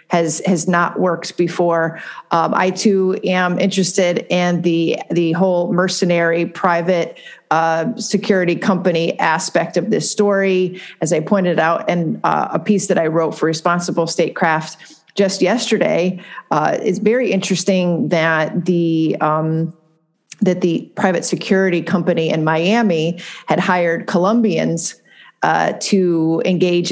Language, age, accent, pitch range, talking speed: English, 40-59, American, 165-195 Hz, 130 wpm